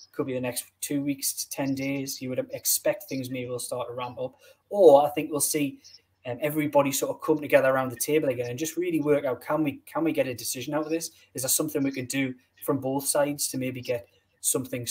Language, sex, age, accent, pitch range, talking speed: English, male, 10-29, British, 125-160 Hz, 250 wpm